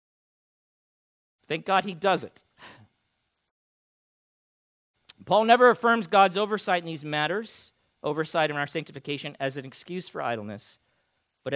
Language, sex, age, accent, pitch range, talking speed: English, male, 40-59, American, 150-215 Hz, 120 wpm